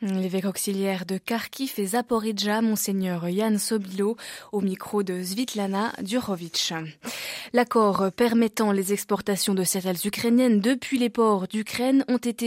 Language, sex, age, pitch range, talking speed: French, female, 20-39, 195-250 Hz, 120 wpm